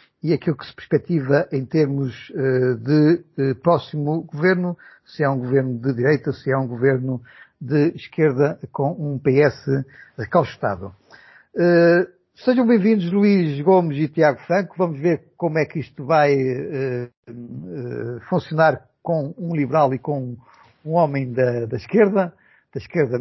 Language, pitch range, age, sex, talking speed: Portuguese, 135-170 Hz, 50-69, male, 135 wpm